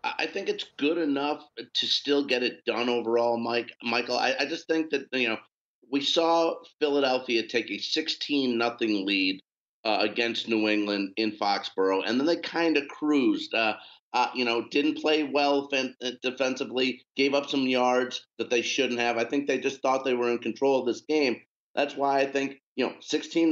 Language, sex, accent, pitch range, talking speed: English, male, American, 120-150 Hz, 195 wpm